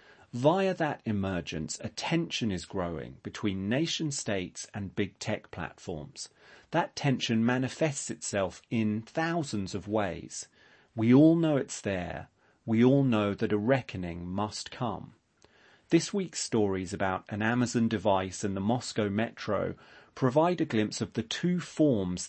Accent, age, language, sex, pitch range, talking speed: British, 30-49, English, male, 100-135 Hz, 140 wpm